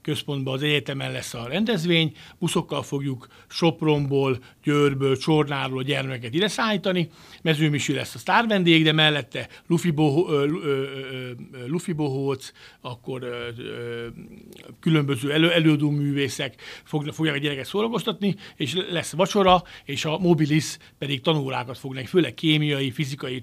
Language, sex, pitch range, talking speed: Hungarian, male, 140-175 Hz, 115 wpm